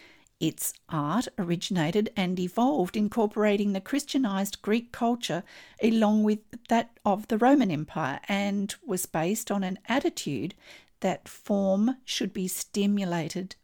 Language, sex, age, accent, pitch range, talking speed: English, female, 50-69, Australian, 170-220 Hz, 125 wpm